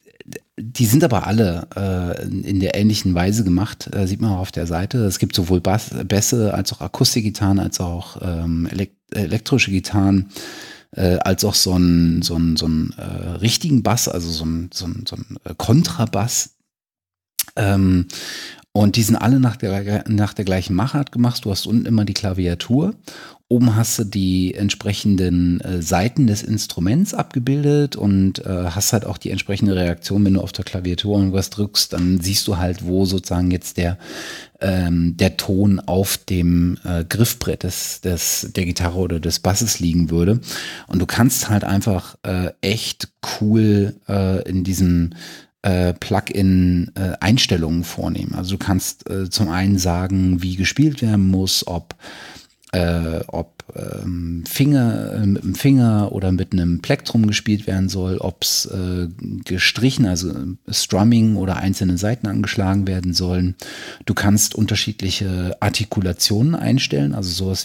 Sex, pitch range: male, 90-110 Hz